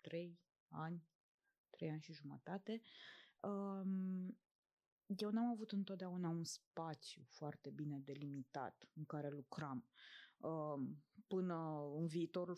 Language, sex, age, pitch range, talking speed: Romanian, female, 20-39, 185-235 Hz, 100 wpm